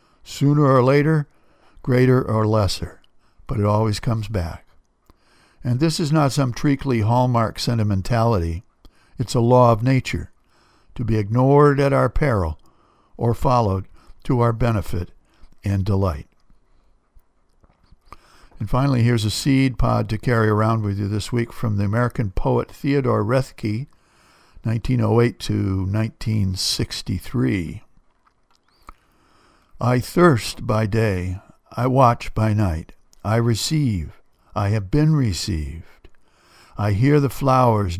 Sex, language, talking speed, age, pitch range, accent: male, English, 120 wpm, 60-79, 105-130 Hz, American